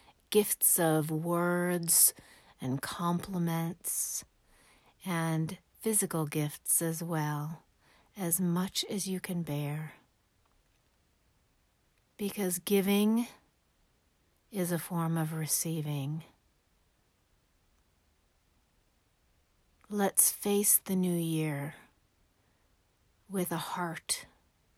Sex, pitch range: female, 150-185 Hz